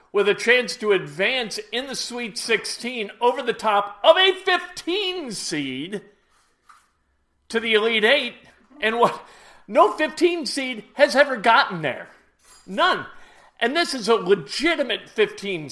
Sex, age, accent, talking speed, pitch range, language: male, 50-69, American, 135 wpm, 190-265 Hz, English